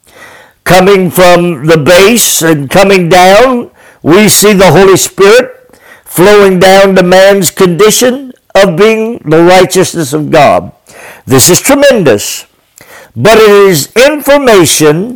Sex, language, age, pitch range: male, English, 60-79, 180-235 Hz